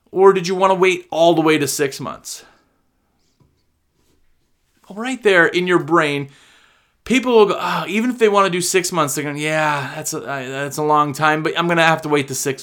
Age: 30-49